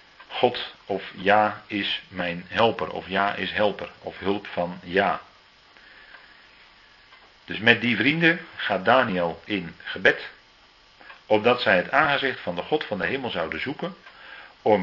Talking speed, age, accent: 140 wpm, 50-69, Dutch